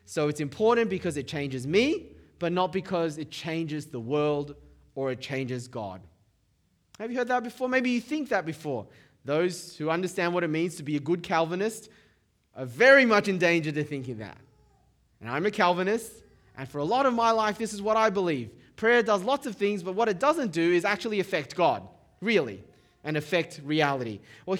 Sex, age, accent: male, 20-39, Australian